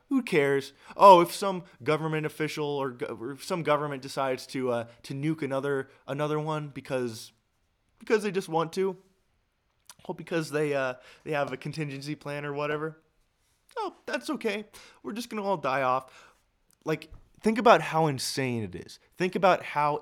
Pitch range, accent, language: 125-160 Hz, American, English